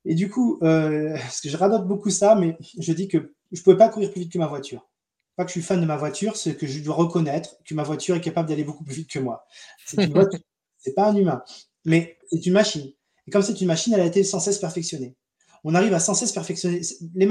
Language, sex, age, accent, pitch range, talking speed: French, male, 20-39, French, 140-185 Hz, 265 wpm